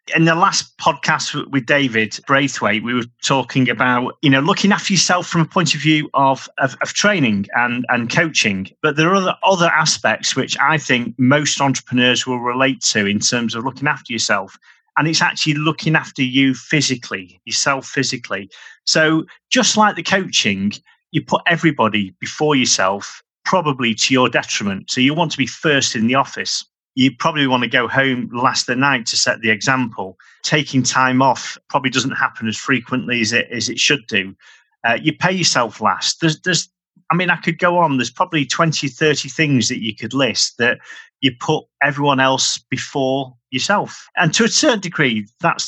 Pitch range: 125-165 Hz